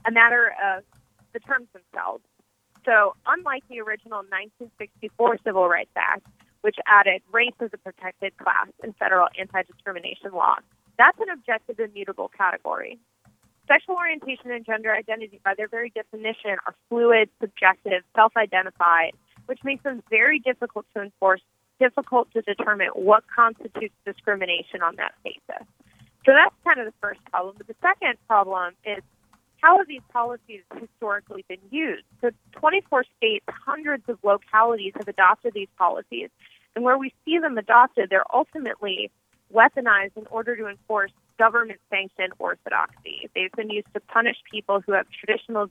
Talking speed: 145 wpm